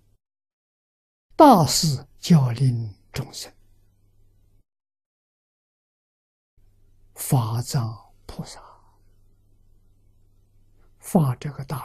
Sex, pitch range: male, 100-135 Hz